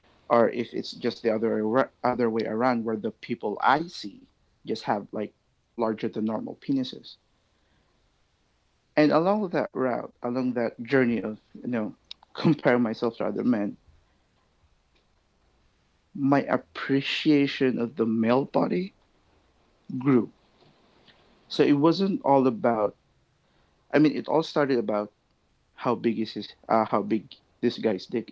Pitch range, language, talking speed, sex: 110-135 Hz, English, 135 wpm, male